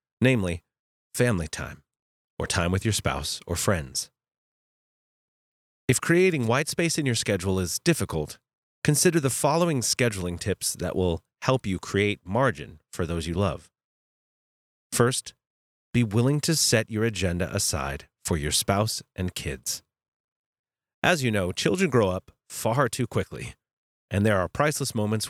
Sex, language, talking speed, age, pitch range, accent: male, English, 145 wpm, 30-49, 95-130 Hz, American